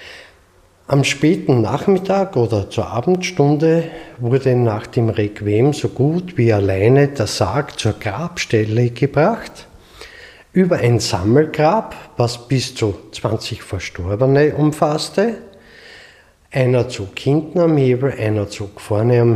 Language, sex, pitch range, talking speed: German, male, 110-150 Hz, 115 wpm